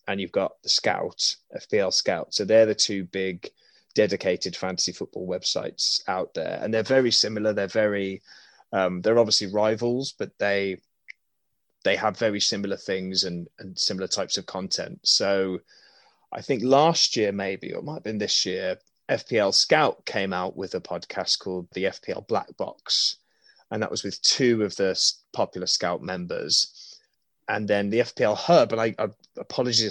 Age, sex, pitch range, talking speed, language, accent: 20-39, male, 95-115 Hz, 165 wpm, English, British